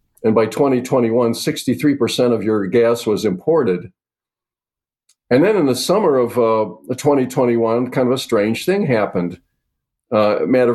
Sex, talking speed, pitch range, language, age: male, 140 wpm, 110-130 Hz, English, 50-69